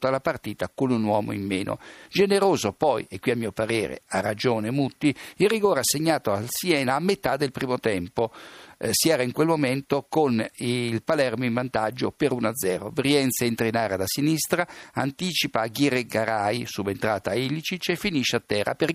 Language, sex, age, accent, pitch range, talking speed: Italian, male, 50-69, native, 115-155 Hz, 175 wpm